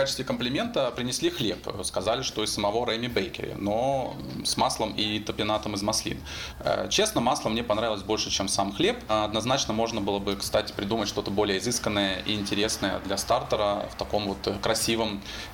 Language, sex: Russian, male